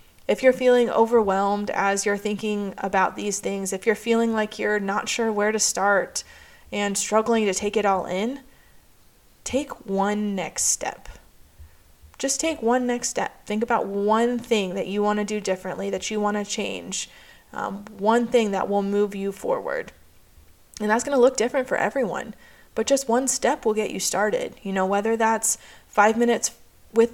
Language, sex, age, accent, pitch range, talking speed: English, female, 20-39, American, 195-235 Hz, 180 wpm